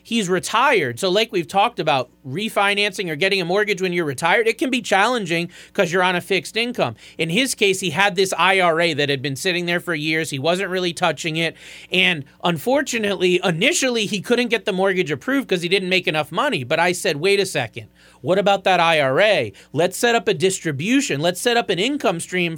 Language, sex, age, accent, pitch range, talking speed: English, male, 30-49, American, 165-210 Hz, 215 wpm